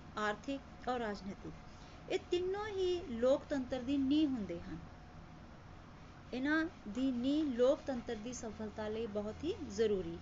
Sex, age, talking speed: female, 30-49, 125 wpm